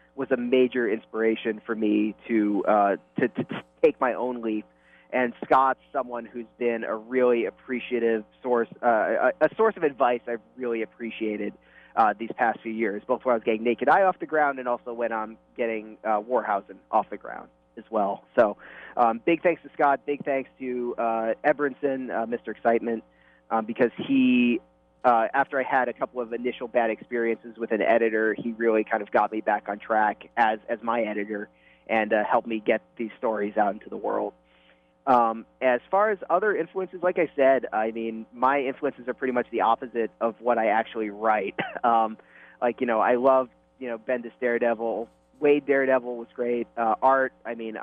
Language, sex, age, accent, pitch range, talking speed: English, male, 20-39, American, 110-130 Hz, 195 wpm